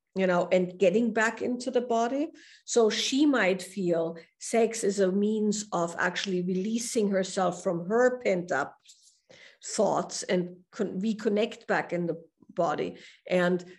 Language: English